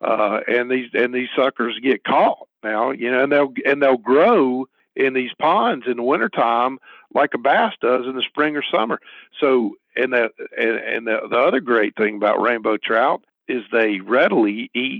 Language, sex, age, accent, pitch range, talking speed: English, male, 50-69, American, 115-140 Hz, 190 wpm